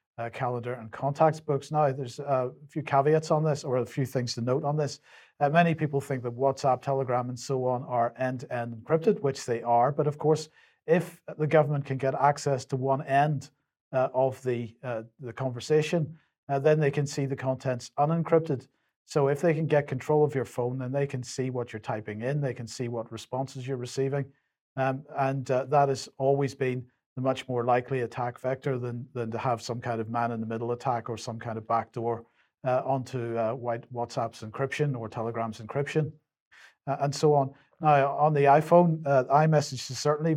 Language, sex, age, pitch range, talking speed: English, male, 40-59, 120-145 Hz, 200 wpm